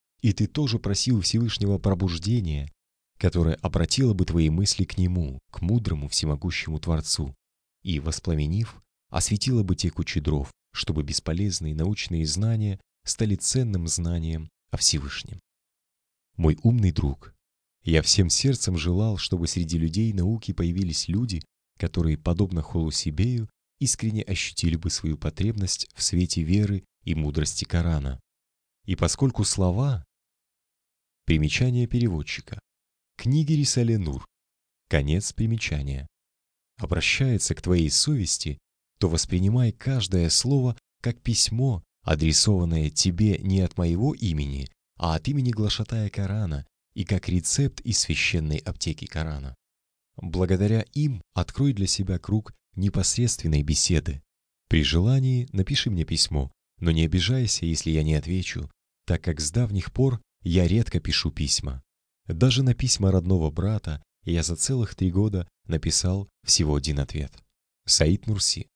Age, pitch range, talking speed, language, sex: 30-49, 80-110 Hz, 125 wpm, Russian, male